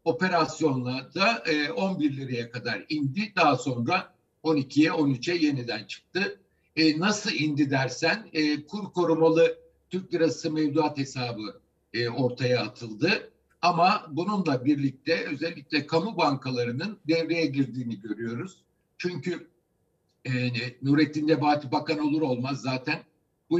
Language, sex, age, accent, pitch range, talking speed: Turkish, male, 60-79, native, 125-160 Hz, 115 wpm